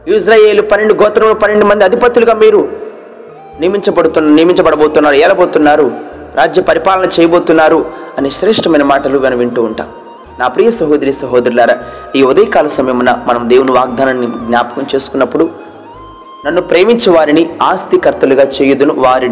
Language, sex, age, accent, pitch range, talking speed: Telugu, male, 30-49, native, 125-200 Hz, 115 wpm